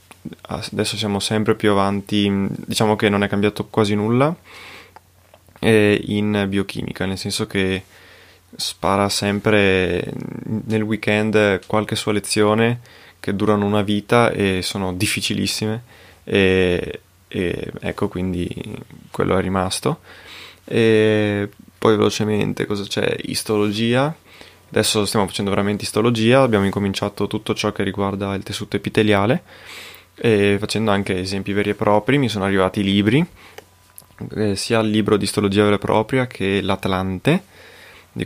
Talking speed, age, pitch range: 130 wpm, 20-39, 100-110 Hz